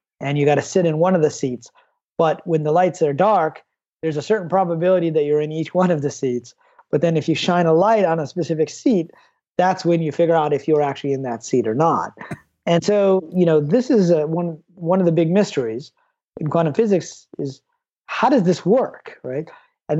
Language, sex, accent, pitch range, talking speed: English, male, American, 160-200 Hz, 220 wpm